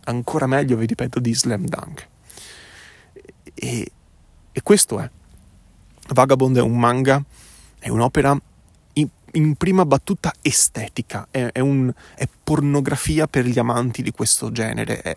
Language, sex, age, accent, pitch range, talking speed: Italian, male, 30-49, native, 115-145 Hz, 135 wpm